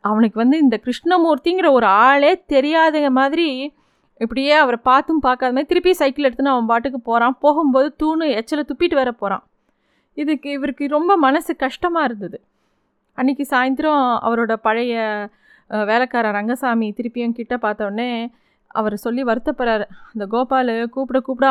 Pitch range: 225-275 Hz